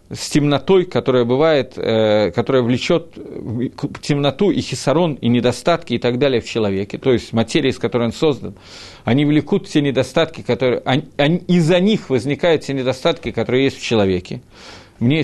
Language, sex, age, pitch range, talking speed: Russian, male, 40-59, 120-175 Hz, 160 wpm